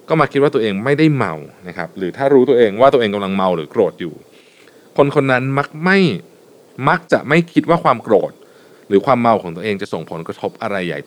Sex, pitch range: male, 100-150 Hz